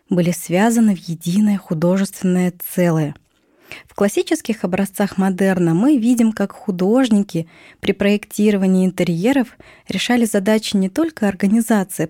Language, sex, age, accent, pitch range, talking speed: Russian, female, 20-39, native, 180-225 Hz, 110 wpm